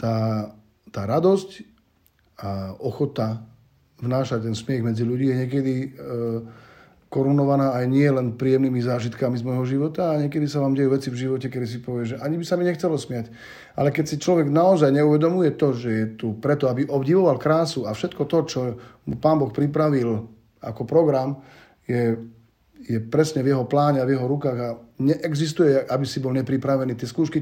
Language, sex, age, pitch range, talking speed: Slovak, male, 40-59, 120-145 Hz, 175 wpm